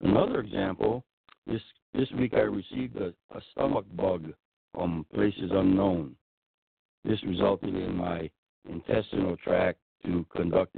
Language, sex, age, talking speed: English, male, 60-79, 120 wpm